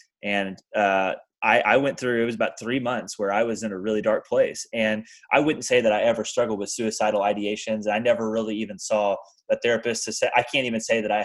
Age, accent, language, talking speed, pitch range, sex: 20-39, American, English, 240 wpm, 105-125 Hz, male